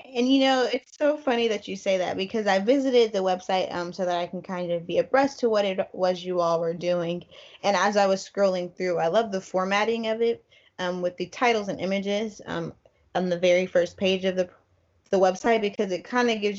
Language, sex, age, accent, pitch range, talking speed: English, female, 10-29, American, 180-220 Hz, 235 wpm